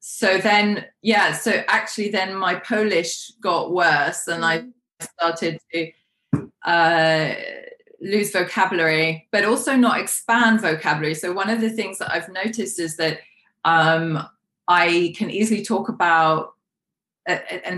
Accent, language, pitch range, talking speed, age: British, English, 165-210 Hz, 130 wpm, 20-39